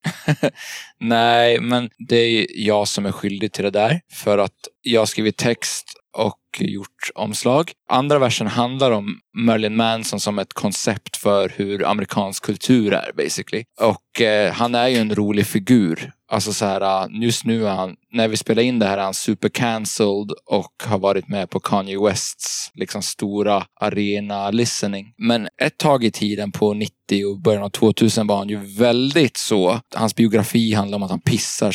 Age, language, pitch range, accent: 20-39, Swedish, 105-120 Hz, native